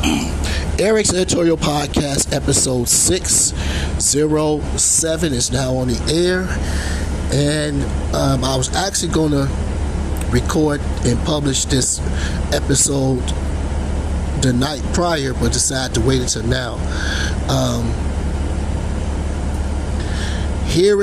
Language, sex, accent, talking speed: English, male, American, 95 wpm